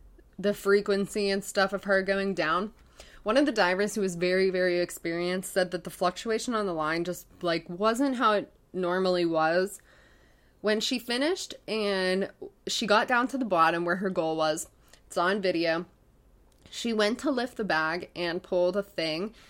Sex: female